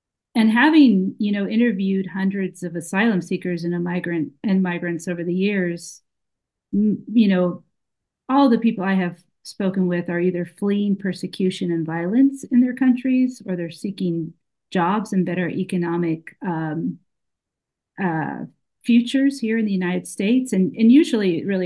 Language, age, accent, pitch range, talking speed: English, 40-59, American, 165-205 Hz, 150 wpm